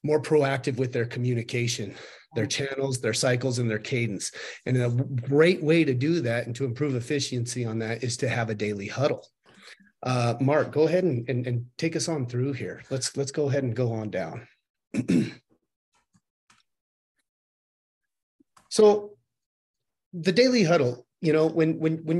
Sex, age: male, 30-49